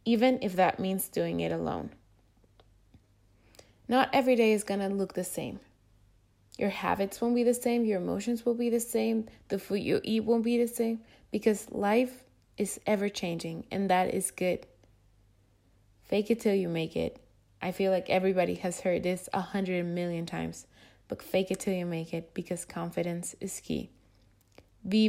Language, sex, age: English, female, 20-39